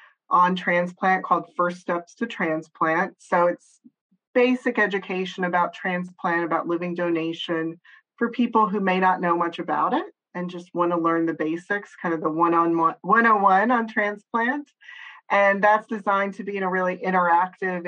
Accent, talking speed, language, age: American, 160 wpm, English, 30-49